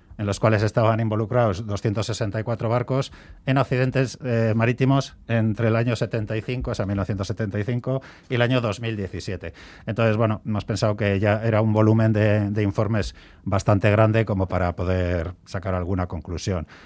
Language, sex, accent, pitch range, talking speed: Spanish, male, Spanish, 95-115 Hz, 150 wpm